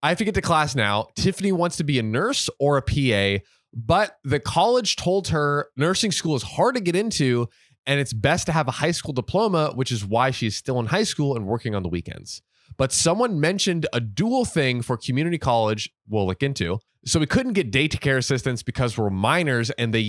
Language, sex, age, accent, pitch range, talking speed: English, male, 20-39, American, 115-165 Hz, 225 wpm